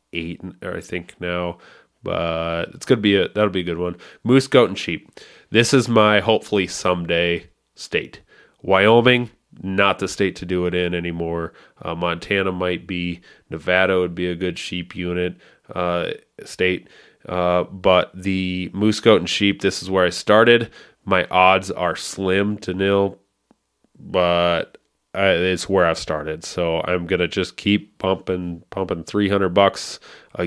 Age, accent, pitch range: 30-49, American, 90-100 Hz